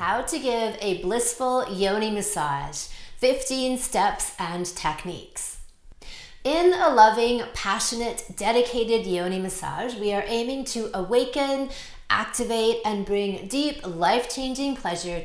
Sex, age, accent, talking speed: female, 30-49, American, 115 wpm